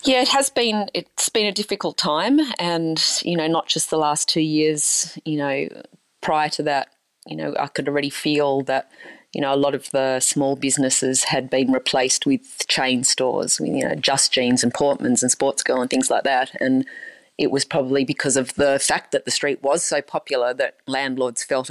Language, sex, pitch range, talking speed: English, female, 130-155 Hz, 205 wpm